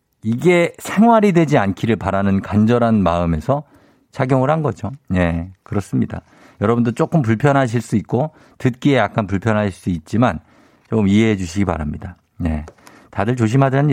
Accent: native